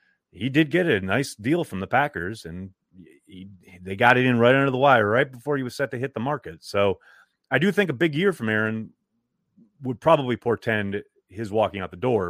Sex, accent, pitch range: male, American, 95-140 Hz